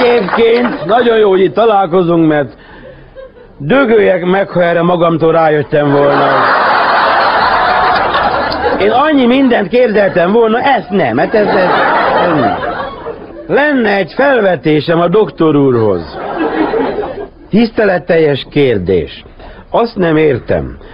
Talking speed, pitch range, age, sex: 100 wpm, 130-195 Hz, 50-69, male